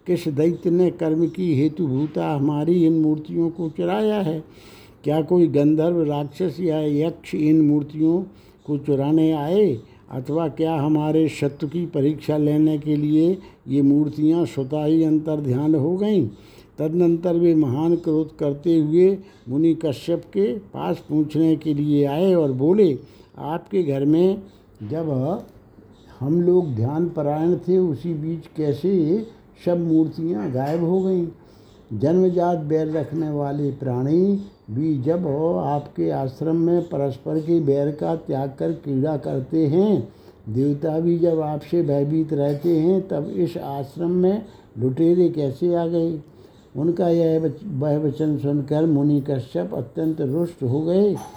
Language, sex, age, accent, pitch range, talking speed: Hindi, male, 60-79, native, 145-170 Hz, 135 wpm